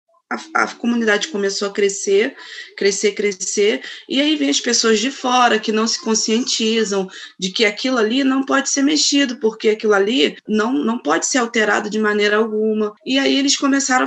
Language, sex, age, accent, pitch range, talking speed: Portuguese, female, 20-39, Brazilian, 200-250 Hz, 180 wpm